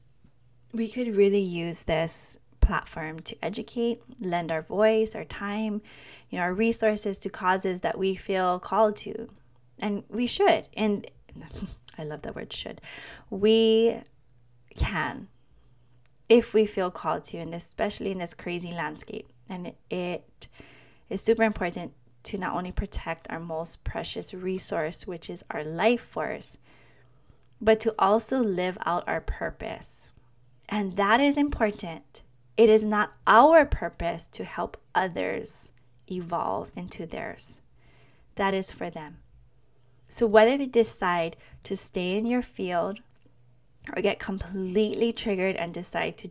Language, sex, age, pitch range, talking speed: English, female, 20-39, 165-220 Hz, 140 wpm